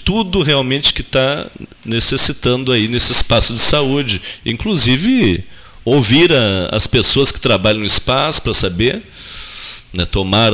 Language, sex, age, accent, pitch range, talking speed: Portuguese, male, 40-59, Brazilian, 100-130 Hz, 130 wpm